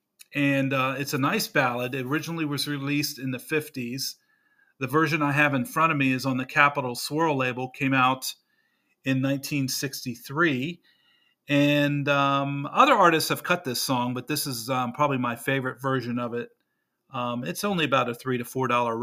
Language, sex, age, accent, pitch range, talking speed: English, male, 40-59, American, 130-160 Hz, 180 wpm